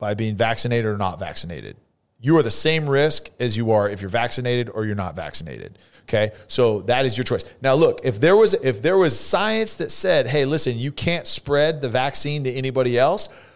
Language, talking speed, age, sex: English, 215 wpm, 40-59, male